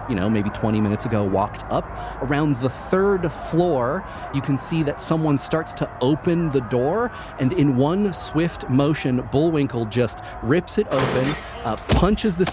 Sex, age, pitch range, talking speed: male, 30-49, 115-150 Hz, 170 wpm